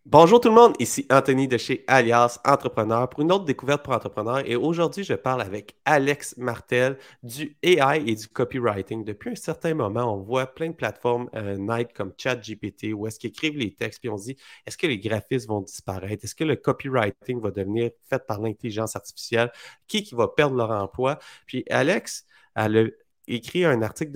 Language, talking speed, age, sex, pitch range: French, 200 wpm, 30-49, male, 110-140 Hz